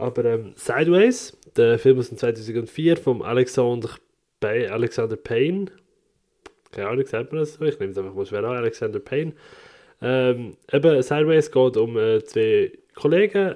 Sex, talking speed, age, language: male, 150 wpm, 20-39, German